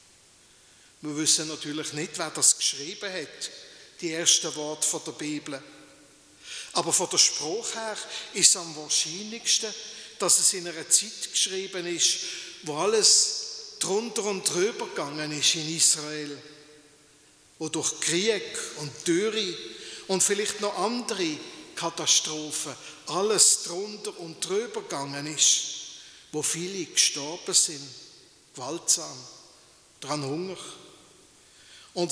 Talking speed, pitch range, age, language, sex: 115 wpm, 155-210 Hz, 50-69, German, male